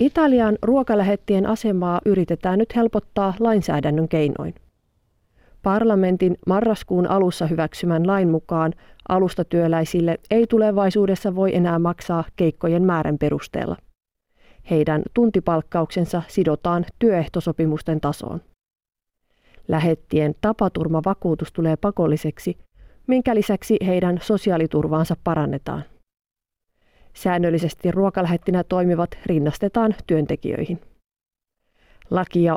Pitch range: 165-200 Hz